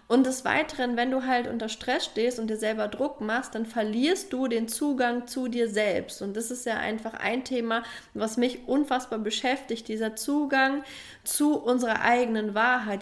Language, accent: German, German